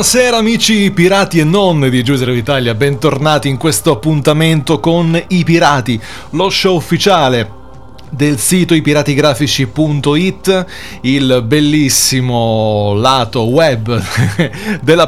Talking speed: 105 wpm